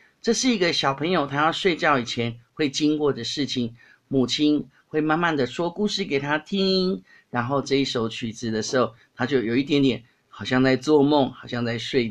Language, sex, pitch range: Chinese, male, 120-150 Hz